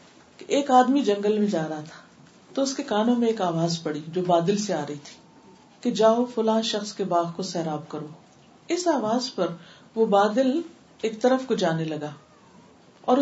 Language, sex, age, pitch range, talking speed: Urdu, female, 50-69, 180-245 Hz, 190 wpm